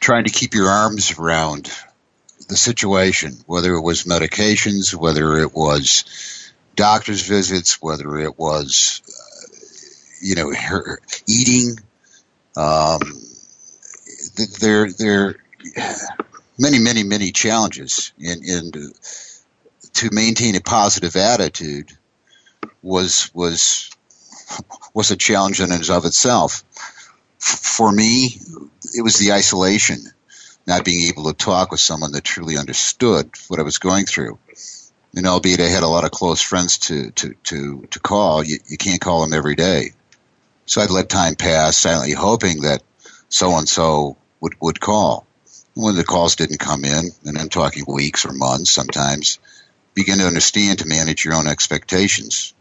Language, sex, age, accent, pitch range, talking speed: English, male, 60-79, American, 75-100 Hz, 145 wpm